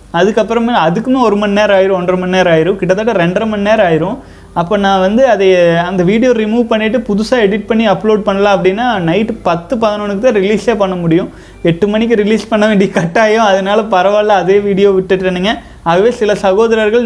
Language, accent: Tamil, native